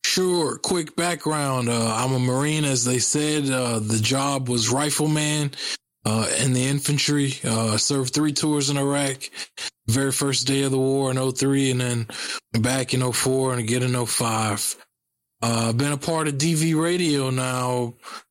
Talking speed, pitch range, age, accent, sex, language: 175 wpm, 115-135 Hz, 20-39, American, male, English